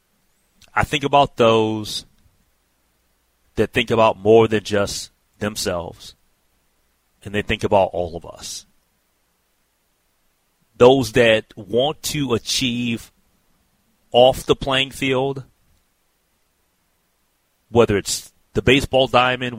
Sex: male